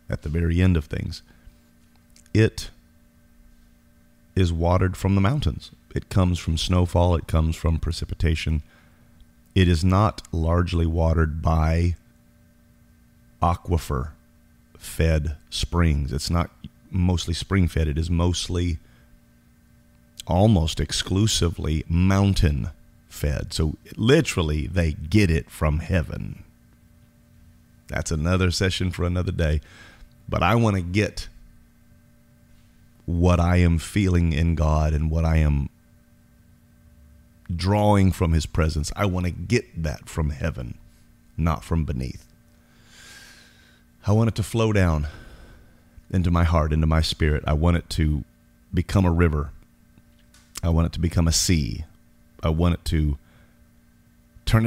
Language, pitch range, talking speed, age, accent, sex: English, 80-90 Hz, 120 wpm, 30-49, American, male